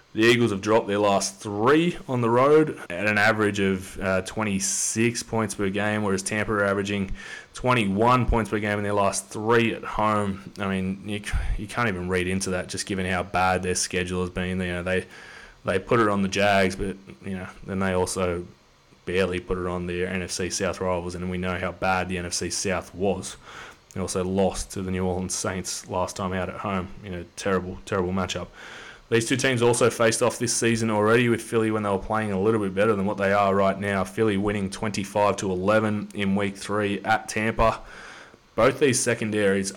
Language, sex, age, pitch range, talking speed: English, male, 20-39, 95-110 Hz, 205 wpm